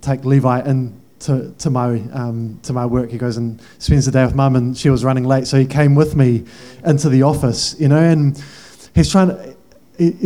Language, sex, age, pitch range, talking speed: English, male, 20-39, 135-175 Hz, 215 wpm